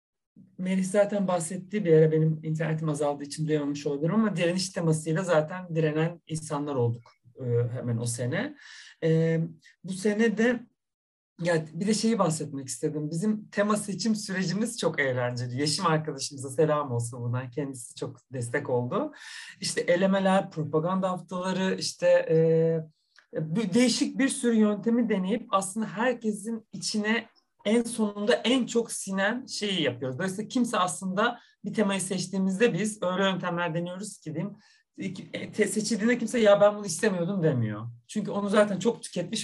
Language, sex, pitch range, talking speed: Turkish, male, 155-215 Hz, 130 wpm